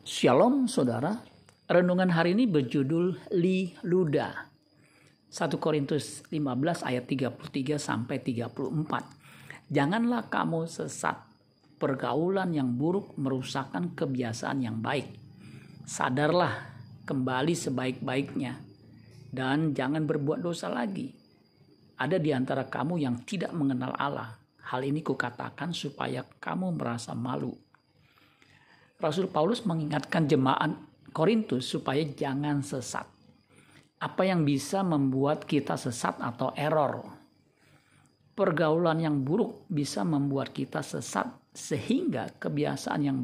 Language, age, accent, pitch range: Indonesian, 50-69, native, 135-165 Hz